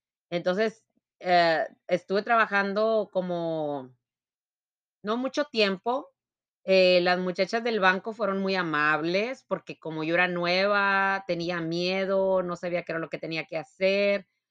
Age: 30-49